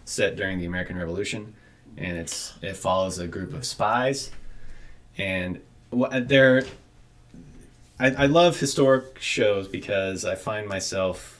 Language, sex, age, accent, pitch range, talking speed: English, male, 20-39, American, 85-105 Hz, 125 wpm